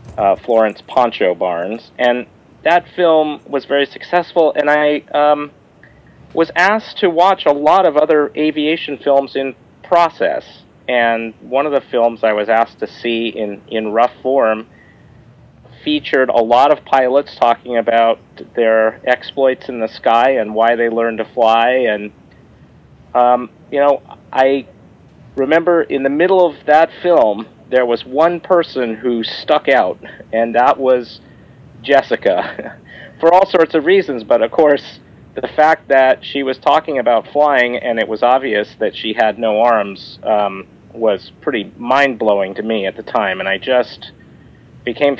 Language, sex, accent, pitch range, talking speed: English, male, American, 115-150 Hz, 160 wpm